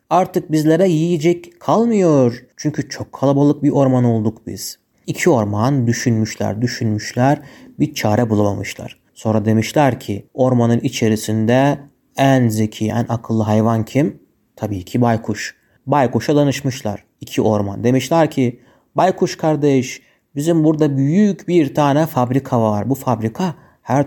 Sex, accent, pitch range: male, native, 115-145 Hz